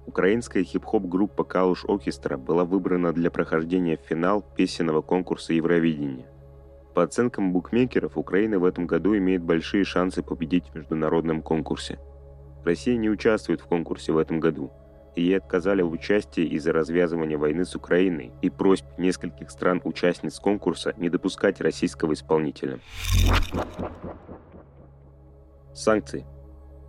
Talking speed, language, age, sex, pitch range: 125 wpm, Russian, 30-49, male, 70-90 Hz